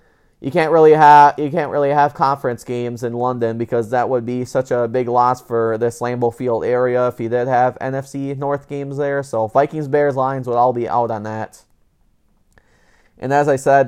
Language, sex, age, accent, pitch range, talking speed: English, male, 30-49, American, 120-145 Hz, 195 wpm